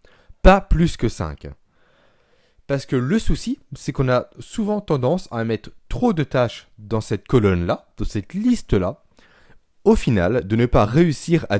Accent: French